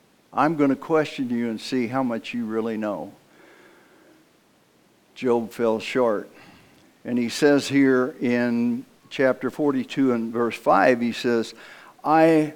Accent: American